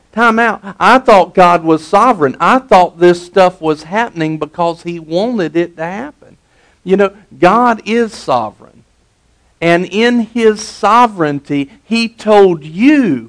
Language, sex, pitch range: English, male, 145-210 Hz